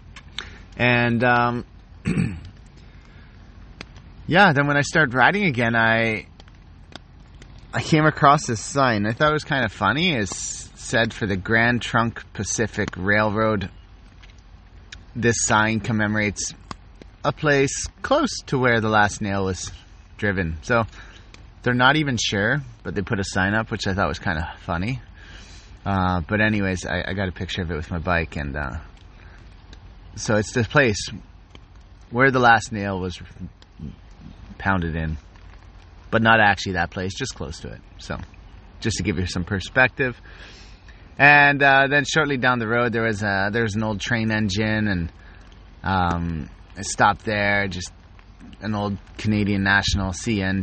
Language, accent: English, American